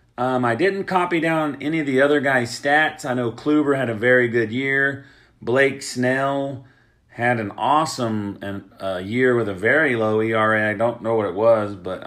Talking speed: 195 wpm